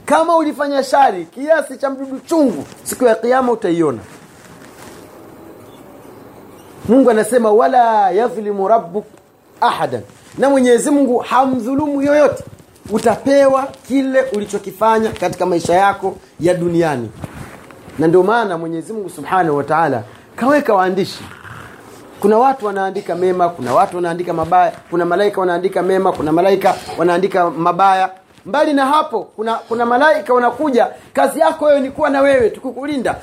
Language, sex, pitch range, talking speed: Swahili, male, 195-280 Hz, 130 wpm